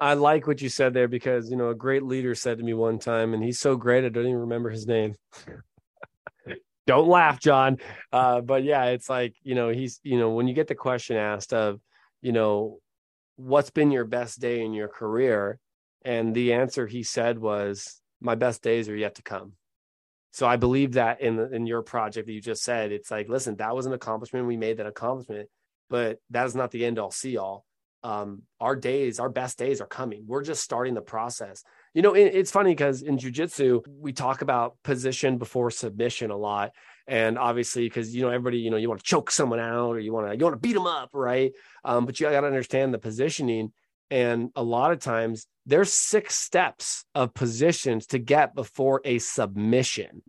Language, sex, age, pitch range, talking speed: English, male, 20-39, 115-145 Hz, 210 wpm